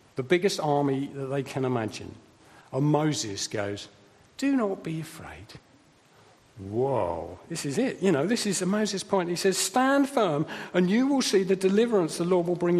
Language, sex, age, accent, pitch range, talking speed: English, male, 50-69, British, 135-195 Hz, 180 wpm